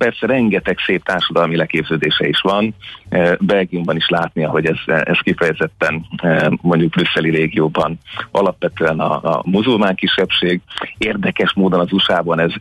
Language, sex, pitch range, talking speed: Hungarian, male, 85-100 Hz, 140 wpm